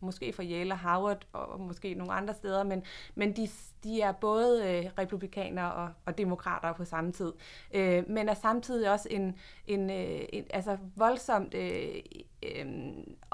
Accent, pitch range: native, 175-205 Hz